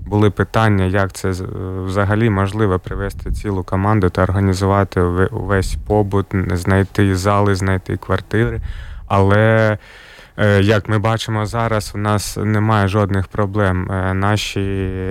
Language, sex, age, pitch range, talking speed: Ukrainian, male, 20-39, 95-105 Hz, 110 wpm